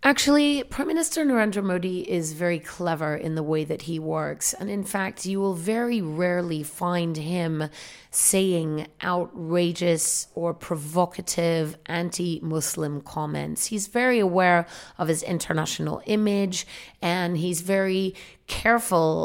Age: 30-49